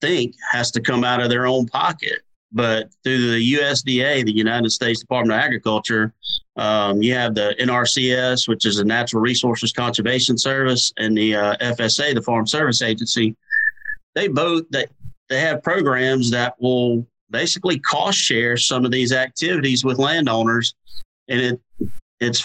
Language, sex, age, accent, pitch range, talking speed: English, male, 40-59, American, 115-135 Hz, 160 wpm